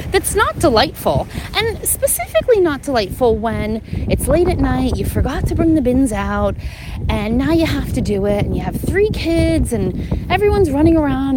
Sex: female